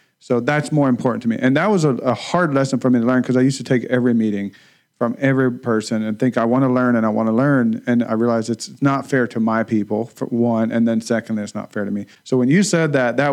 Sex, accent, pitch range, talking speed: male, American, 115-135 Hz, 285 wpm